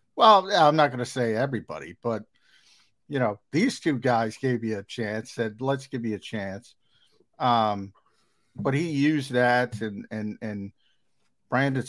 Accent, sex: American, male